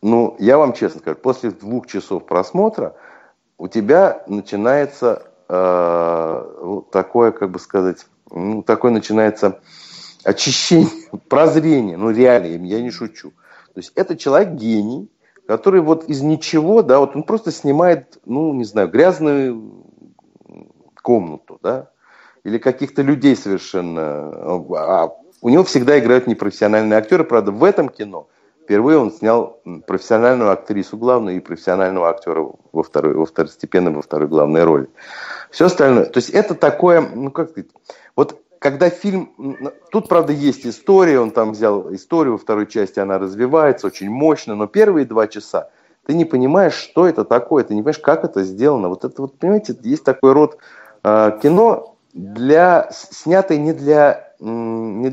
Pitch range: 105-155 Hz